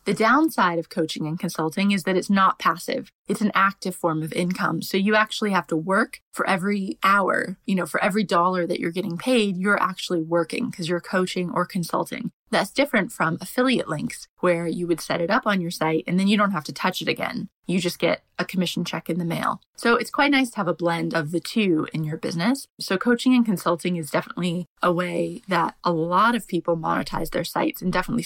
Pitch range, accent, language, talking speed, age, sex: 175-220 Hz, American, English, 225 wpm, 20-39, female